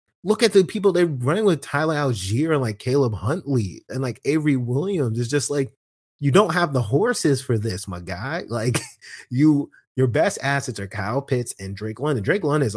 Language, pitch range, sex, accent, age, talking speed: English, 115-145 Hz, male, American, 30-49, 200 wpm